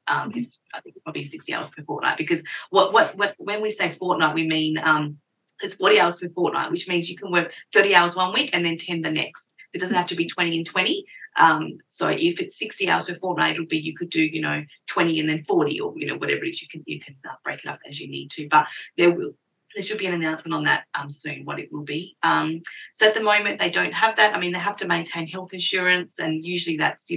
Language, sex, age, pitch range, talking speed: English, female, 30-49, 155-185 Hz, 265 wpm